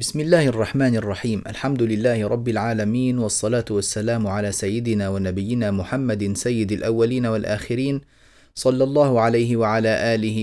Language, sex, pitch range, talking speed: Arabic, male, 105-130 Hz, 125 wpm